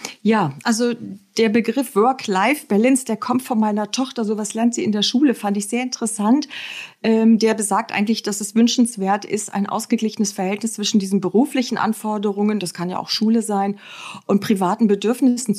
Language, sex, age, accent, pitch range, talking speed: German, female, 40-59, German, 200-230 Hz, 165 wpm